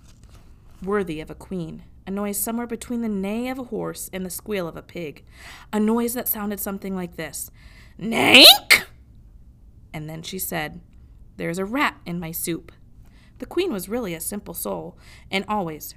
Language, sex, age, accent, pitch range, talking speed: English, female, 20-39, American, 165-215 Hz, 175 wpm